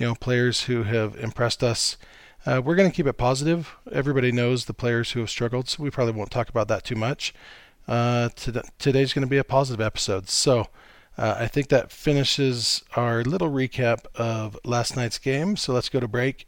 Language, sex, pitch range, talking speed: English, male, 115-140 Hz, 210 wpm